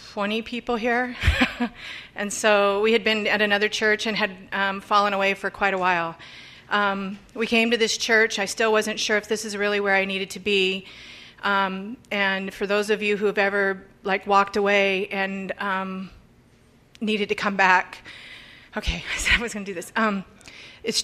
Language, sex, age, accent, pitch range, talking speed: English, female, 30-49, American, 200-230 Hz, 195 wpm